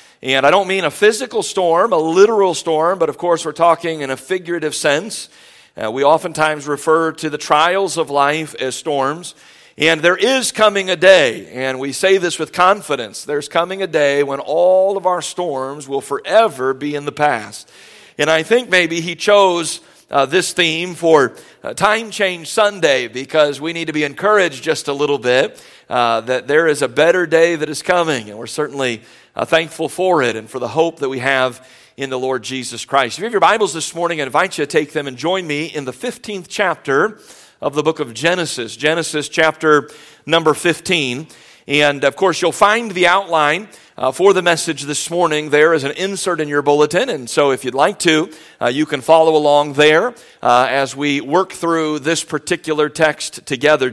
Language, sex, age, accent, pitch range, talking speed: English, male, 50-69, American, 145-185 Hz, 195 wpm